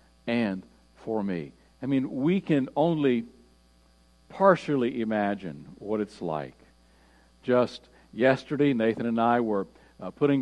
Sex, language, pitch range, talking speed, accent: male, English, 100-135 Hz, 120 wpm, American